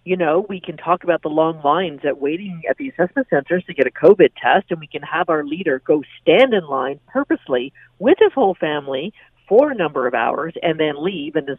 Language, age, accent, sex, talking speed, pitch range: English, 50-69, American, female, 235 wpm, 145-200 Hz